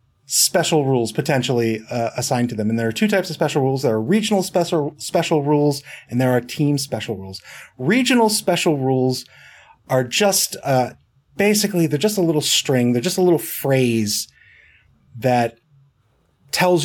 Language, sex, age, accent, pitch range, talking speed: English, male, 30-49, American, 120-165 Hz, 165 wpm